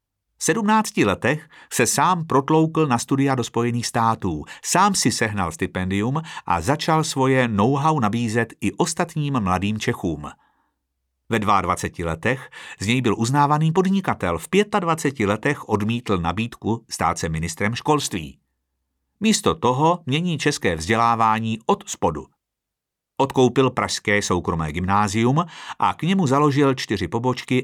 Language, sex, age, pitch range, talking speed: Czech, male, 50-69, 105-150 Hz, 125 wpm